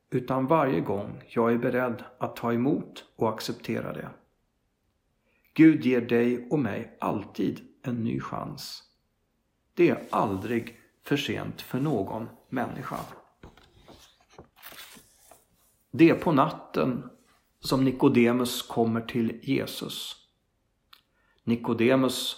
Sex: male